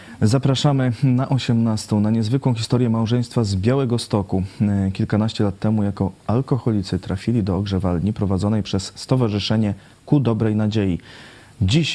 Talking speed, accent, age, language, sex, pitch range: 125 wpm, native, 30-49, Polish, male, 95-120 Hz